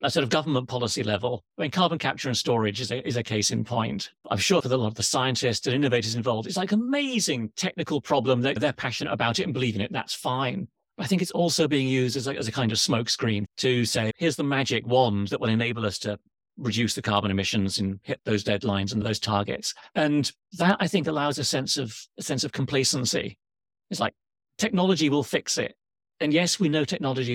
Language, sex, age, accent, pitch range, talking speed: English, male, 40-59, British, 110-150 Hz, 235 wpm